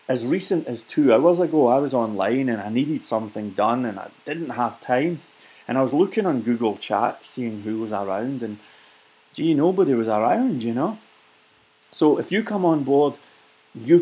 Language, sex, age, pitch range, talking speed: English, male, 30-49, 115-155 Hz, 190 wpm